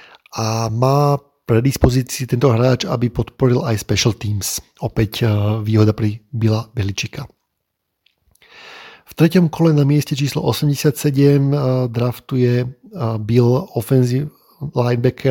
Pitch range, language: 115-140 Hz, Slovak